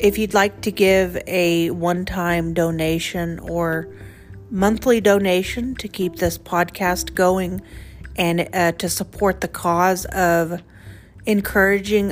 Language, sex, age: English, female, 40-59